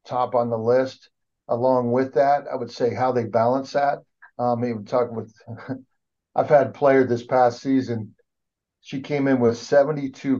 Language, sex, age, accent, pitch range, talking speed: English, male, 50-69, American, 110-125 Hz, 165 wpm